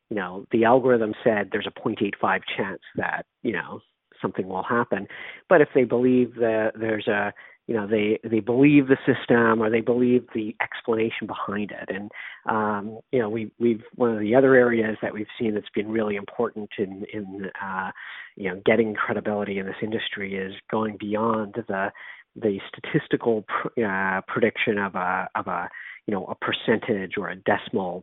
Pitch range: 105-115 Hz